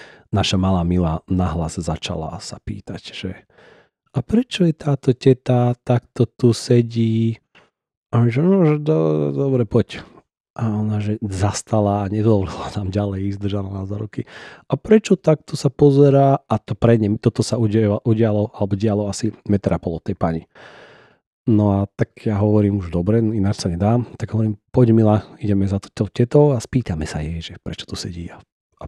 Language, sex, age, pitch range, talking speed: Slovak, male, 40-59, 90-115 Hz, 170 wpm